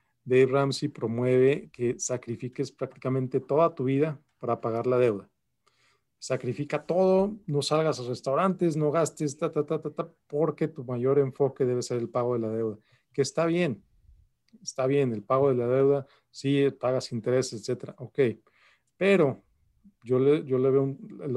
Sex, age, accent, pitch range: male, 40-59, Mexican, 120-140 Hz